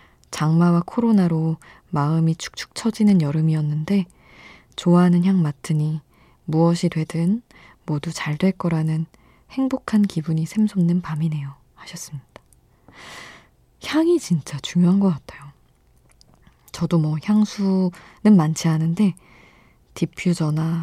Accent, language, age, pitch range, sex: native, Korean, 20-39, 155-180 Hz, female